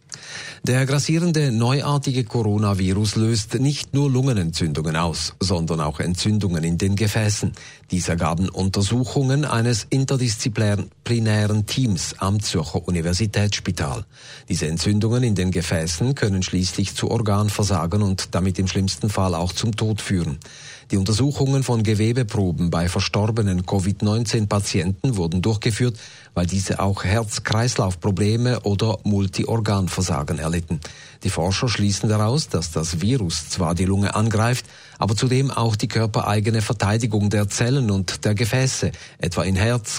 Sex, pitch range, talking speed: male, 95-120 Hz, 125 wpm